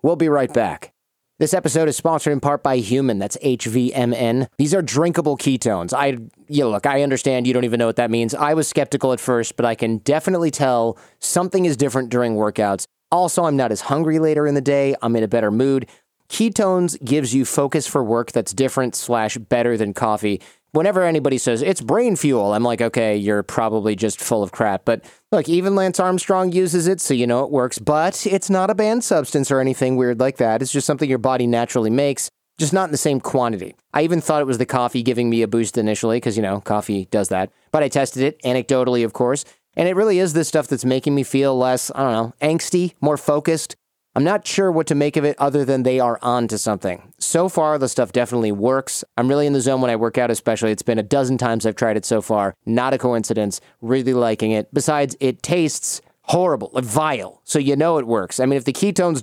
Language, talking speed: English, 230 wpm